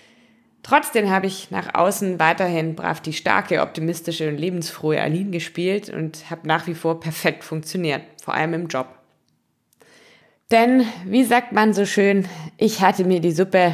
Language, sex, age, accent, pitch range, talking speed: German, female, 20-39, German, 160-205 Hz, 155 wpm